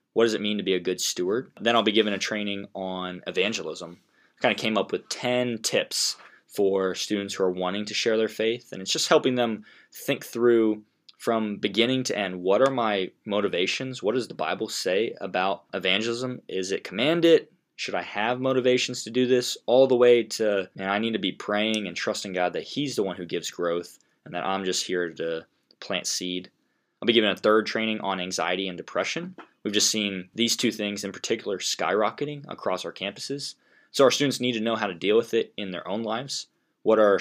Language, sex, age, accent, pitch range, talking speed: English, male, 20-39, American, 95-120 Hz, 215 wpm